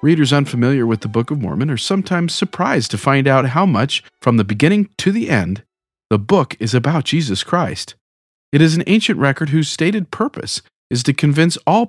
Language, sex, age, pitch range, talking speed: English, male, 40-59, 120-175 Hz, 195 wpm